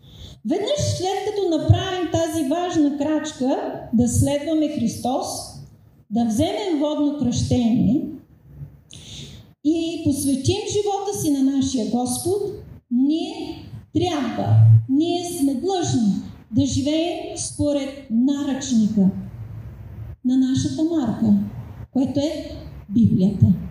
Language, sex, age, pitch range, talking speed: Bulgarian, female, 30-49, 230-315 Hz, 90 wpm